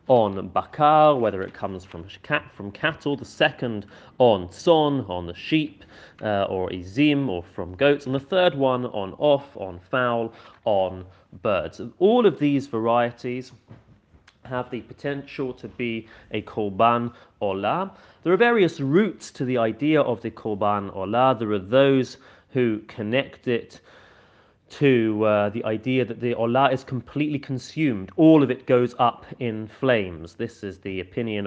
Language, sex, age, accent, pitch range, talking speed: English, male, 30-49, British, 100-130 Hz, 160 wpm